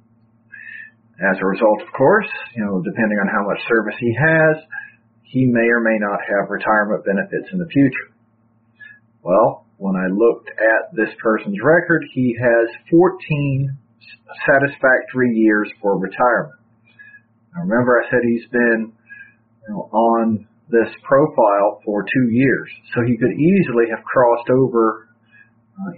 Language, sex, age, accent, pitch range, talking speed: English, male, 40-59, American, 115-170 Hz, 145 wpm